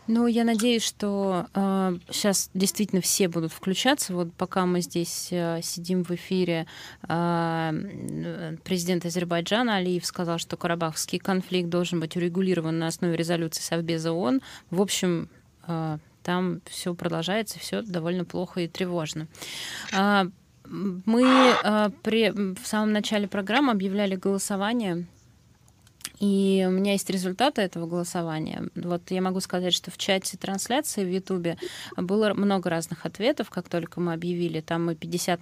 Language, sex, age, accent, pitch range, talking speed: Russian, female, 20-39, native, 170-200 Hz, 130 wpm